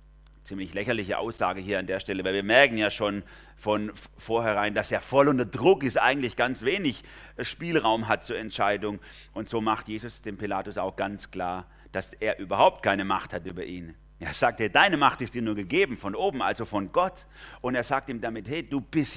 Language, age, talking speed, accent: German, 30-49, 205 wpm, German